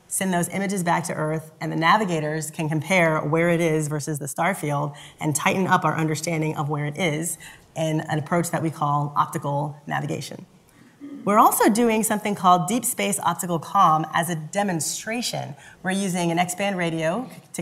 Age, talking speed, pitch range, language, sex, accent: 30-49, 180 wpm, 155-190 Hz, English, female, American